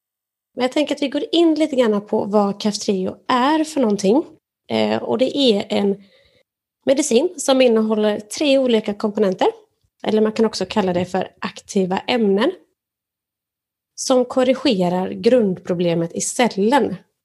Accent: native